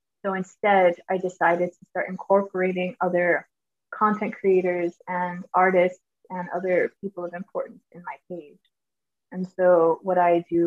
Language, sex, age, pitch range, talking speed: English, female, 20-39, 175-190 Hz, 140 wpm